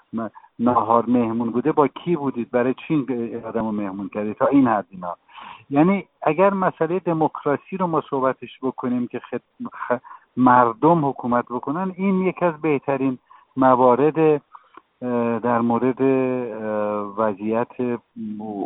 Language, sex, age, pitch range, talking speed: English, male, 50-69, 120-155 Hz, 115 wpm